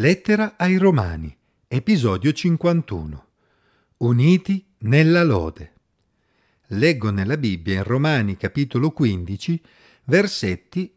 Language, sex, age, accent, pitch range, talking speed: Italian, male, 50-69, native, 105-175 Hz, 90 wpm